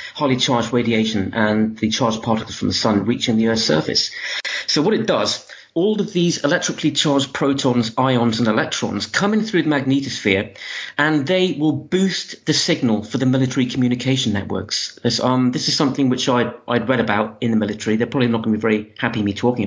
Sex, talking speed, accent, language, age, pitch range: male, 200 wpm, British, English, 40-59, 115-150 Hz